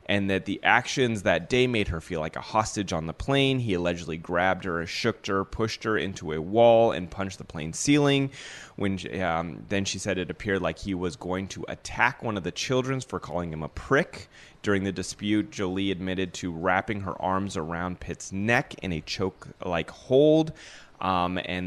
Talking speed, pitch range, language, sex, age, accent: 195 wpm, 85-110 Hz, English, male, 30-49, American